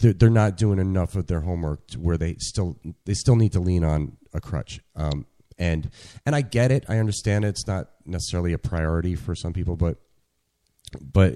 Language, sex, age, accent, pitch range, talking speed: English, male, 30-49, American, 80-105 Hz, 200 wpm